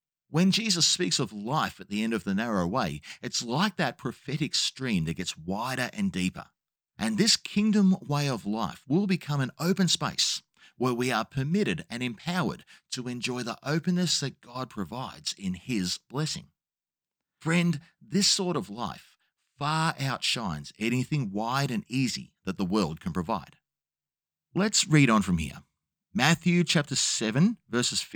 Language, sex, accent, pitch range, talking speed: English, male, Australian, 115-180 Hz, 160 wpm